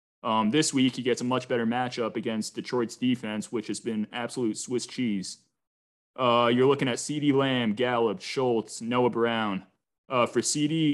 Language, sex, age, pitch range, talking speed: English, male, 20-39, 115-130 Hz, 170 wpm